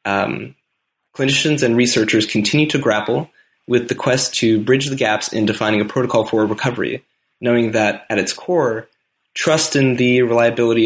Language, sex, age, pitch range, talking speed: English, male, 20-39, 110-135 Hz, 160 wpm